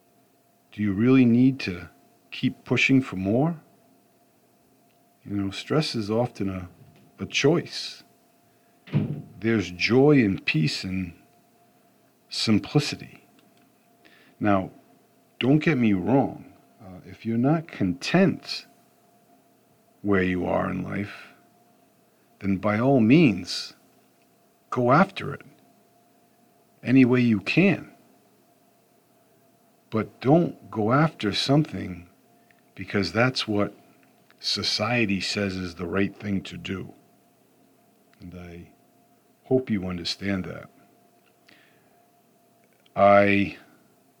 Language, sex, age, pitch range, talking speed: English, male, 50-69, 95-125 Hz, 100 wpm